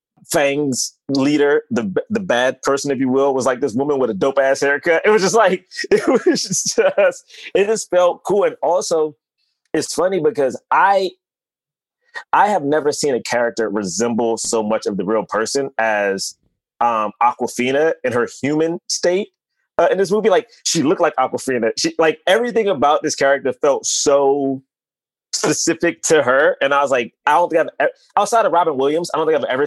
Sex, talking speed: male, 185 wpm